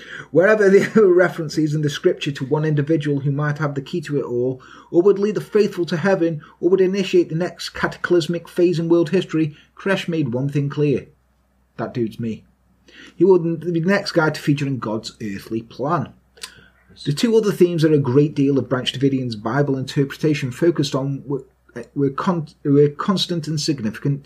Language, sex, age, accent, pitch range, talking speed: English, male, 30-49, British, 120-165 Hz, 185 wpm